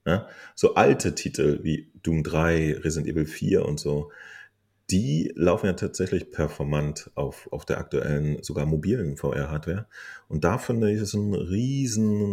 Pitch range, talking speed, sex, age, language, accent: 80-100 Hz, 150 wpm, male, 30-49, German, German